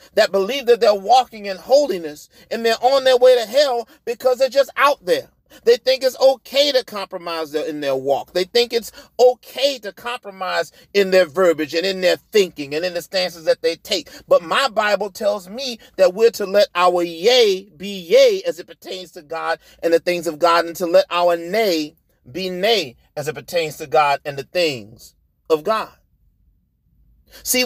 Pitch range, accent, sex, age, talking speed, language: 180-255 Hz, American, male, 40-59, 195 wpm, English